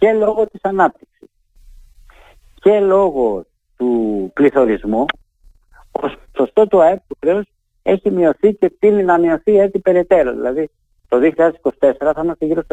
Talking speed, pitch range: 135 wpm, 130-190 Hz